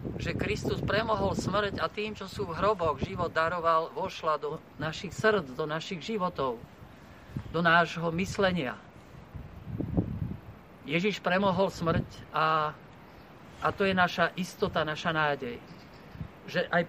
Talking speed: 125 wpm